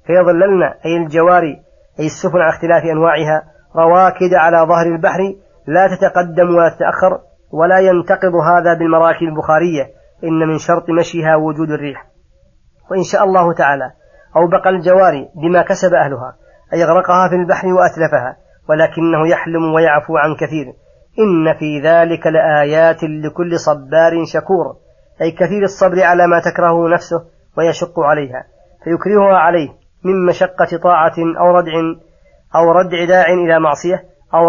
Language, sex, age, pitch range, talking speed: Arabic, female, 30-49, 160-180 Hz, 130 wpm